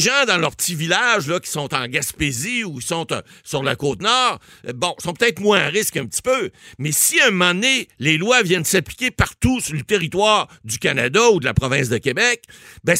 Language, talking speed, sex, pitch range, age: French, 220 wpm, male, 155-230 Hz, 60-79